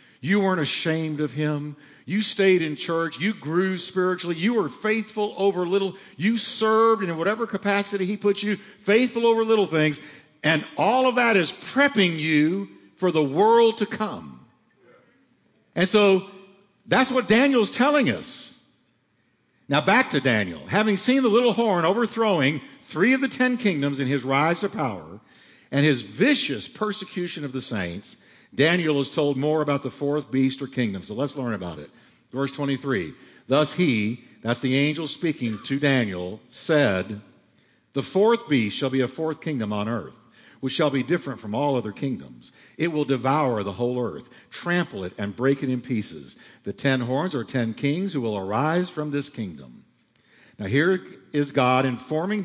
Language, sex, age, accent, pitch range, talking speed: English, male, 50-69, American, 135-200 Hz, 170 wpm